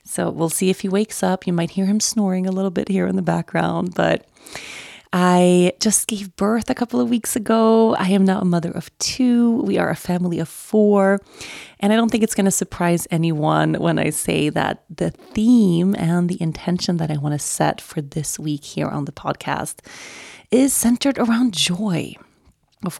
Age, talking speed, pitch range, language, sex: 30-49, 200 wpm, 170-210 Hz, English, female